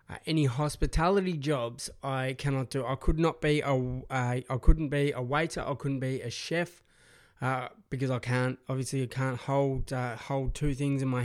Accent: Australian